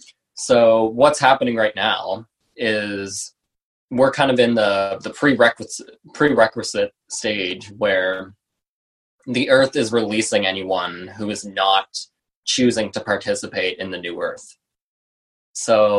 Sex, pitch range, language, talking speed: male, 100-130 Hz, English, 120 wpm